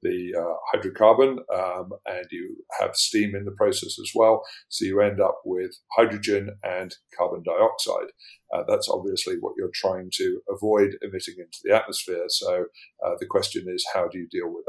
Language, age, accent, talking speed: English, 50-69, British, 180 wpm